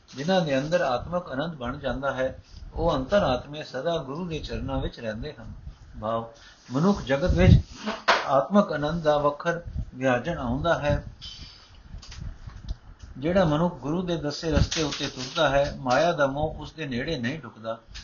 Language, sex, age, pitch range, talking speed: Punjabi, male, 60-79, 125-170 Hz, 150 wpm